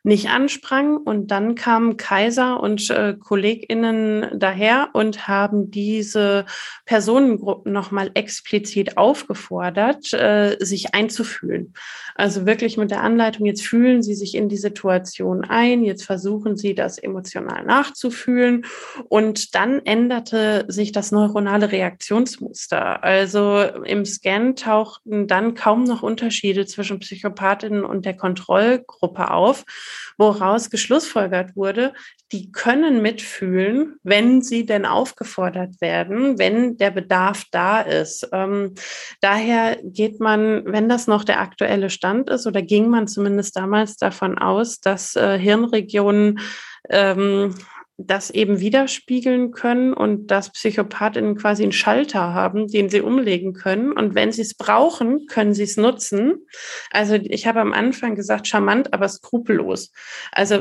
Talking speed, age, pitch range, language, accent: 130 wpm, 20-39, 200-235 Hz, German, German